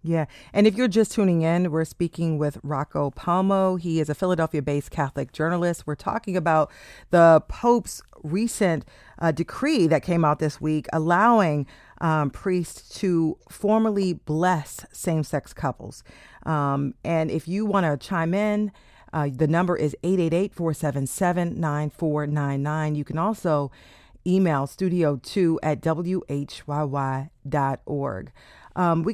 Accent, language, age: American, English, 40-59